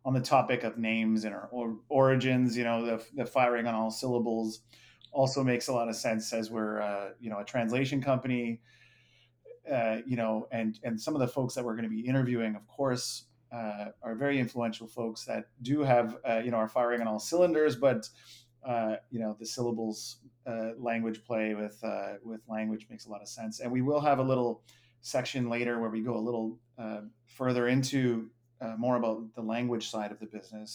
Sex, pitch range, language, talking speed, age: male, 110-125 Hz, English, 205 wpm, 30-49